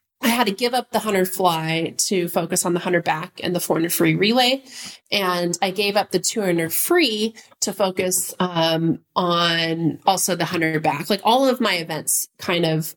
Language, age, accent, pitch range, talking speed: English, 30-49, American, 175-210 Hz, 190 wpm